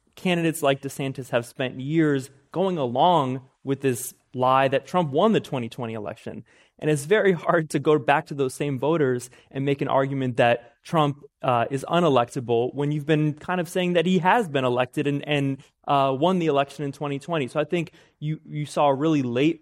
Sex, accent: male, American